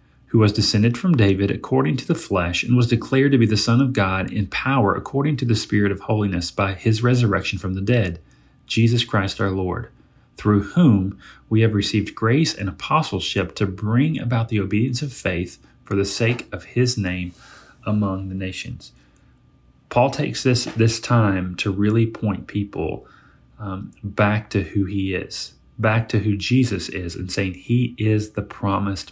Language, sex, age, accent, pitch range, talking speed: English, male, 40-59, American, 95-120 Hz, 175 wpm